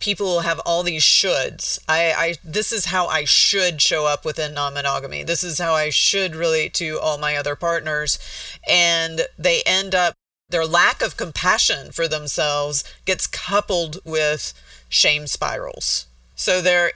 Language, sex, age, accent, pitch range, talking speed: English, female, 40-59, American, 150-175 Hz, 155 wpm